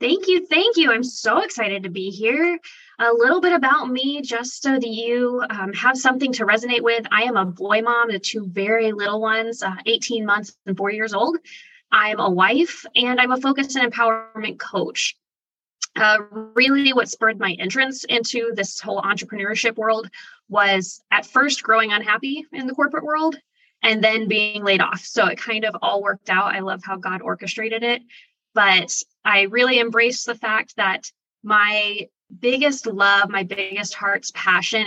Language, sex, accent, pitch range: English, female, American, 200-245 Hz